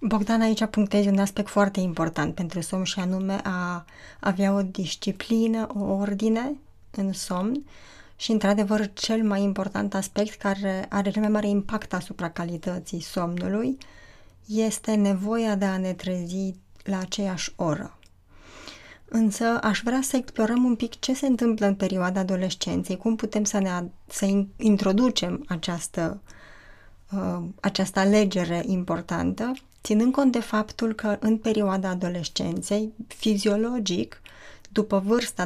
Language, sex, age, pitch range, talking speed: Romanian, female, 20-39, 185-220 Hz, 125 wpm